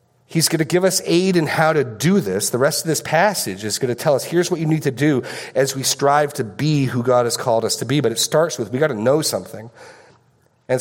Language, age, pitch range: English, 40-59, 130-175 Hz